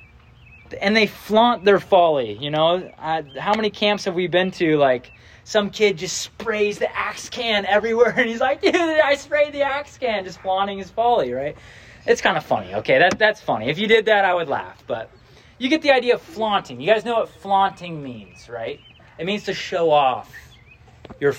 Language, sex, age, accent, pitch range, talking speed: English, male, 20-39, American, 130-205 Hz, 205 wpm